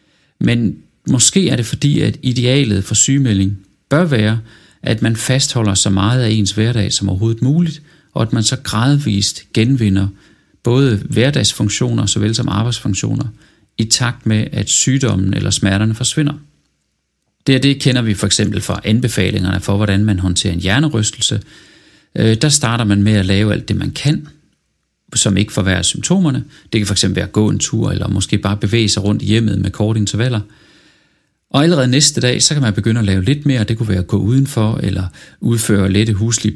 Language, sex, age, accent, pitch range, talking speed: Danish, male, 40-59, native, 100-130 Hz, 180 wpm